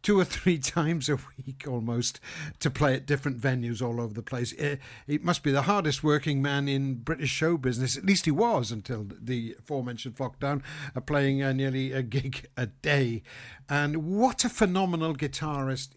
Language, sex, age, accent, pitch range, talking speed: English, male, 50-69, British, 125-150 Hz, 175 wpm